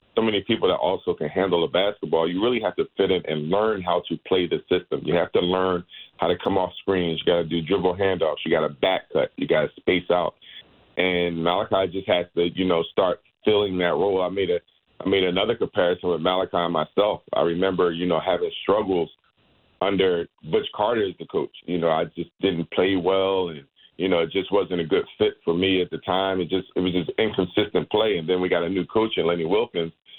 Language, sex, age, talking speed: English, male, 40-59, 230 wpm